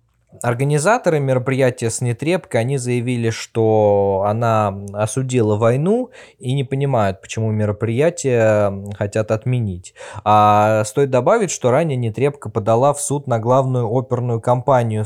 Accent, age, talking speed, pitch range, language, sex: native, 20-39, 120 wpm, 105-130 Hz, Russian, male